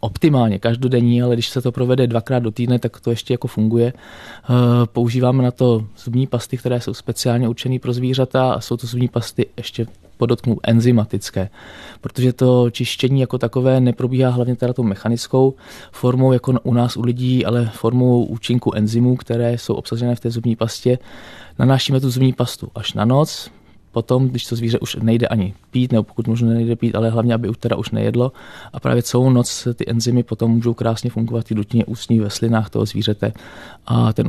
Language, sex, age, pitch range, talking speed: Czech, male, 20-39, 115-125 Hz, 185 wpm